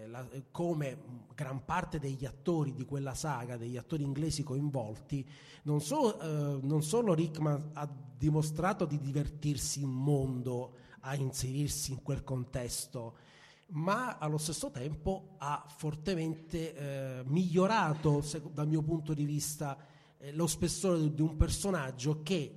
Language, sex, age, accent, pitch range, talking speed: Italian, male, 30-49, native, 135-165 Hz, 125 wpm